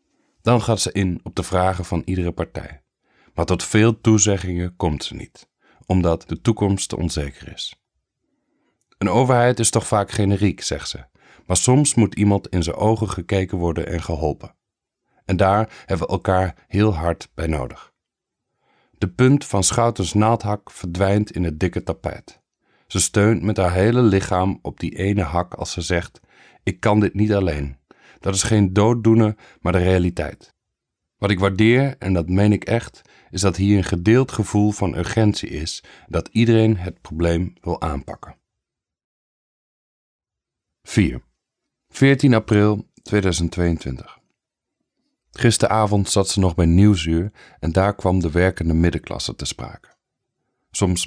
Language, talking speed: English, 150 wpm